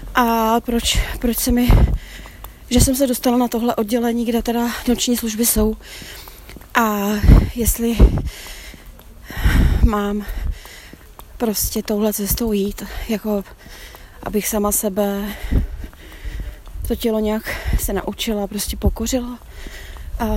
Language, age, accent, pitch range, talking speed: Czech, 30-49, native, 200-230 Hz, 105 wpm